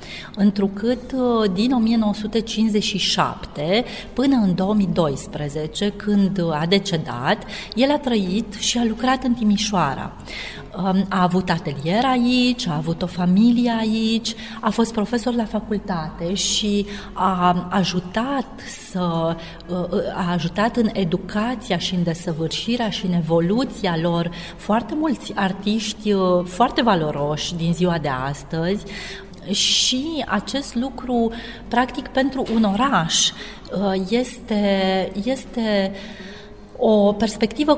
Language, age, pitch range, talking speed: Romanian, 30-49, 180-230 Hz, 100 wpm